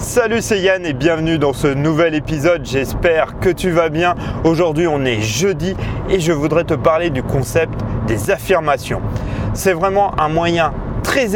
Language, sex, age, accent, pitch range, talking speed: French, male, 30-49, French, 125-180 Hz, 170 wpm